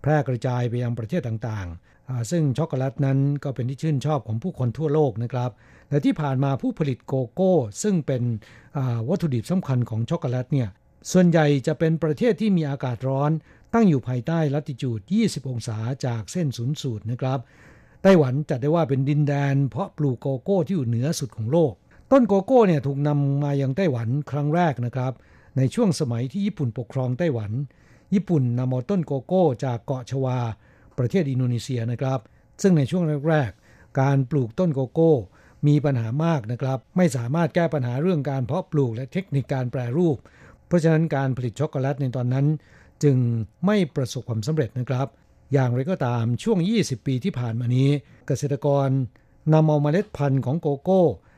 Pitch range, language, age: 125-160 Hz, Thai, 60-79